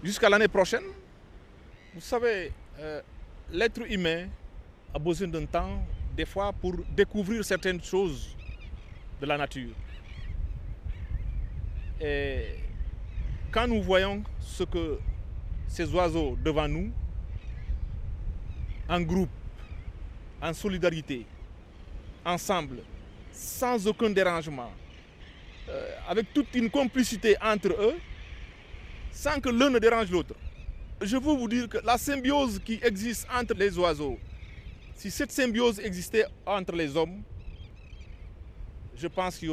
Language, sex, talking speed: French, male, 115 wpm